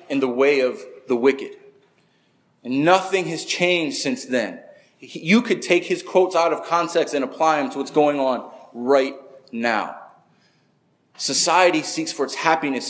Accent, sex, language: American, male, English